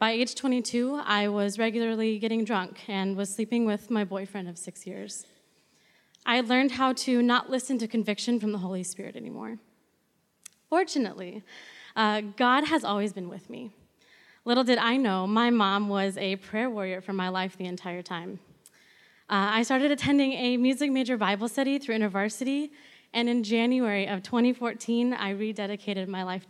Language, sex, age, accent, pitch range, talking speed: English, female, 20-39, American, 200-255 Hz, 170 wpm